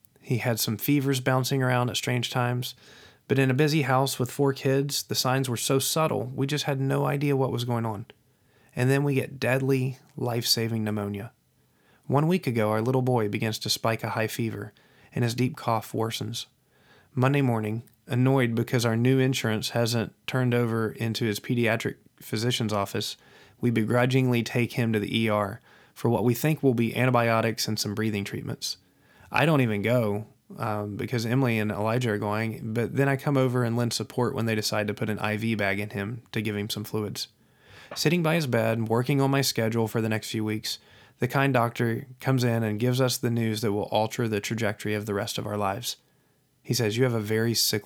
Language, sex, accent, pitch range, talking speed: English, male, American, 110-130 Hz, 205 wpm